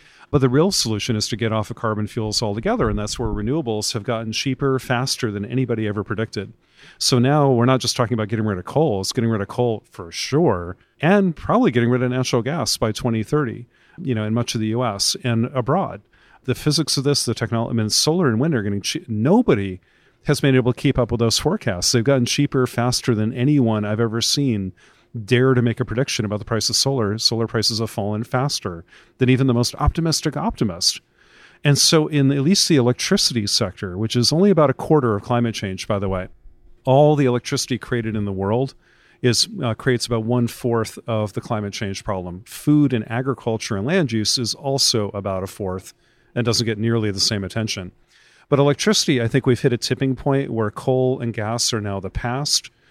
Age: 40-59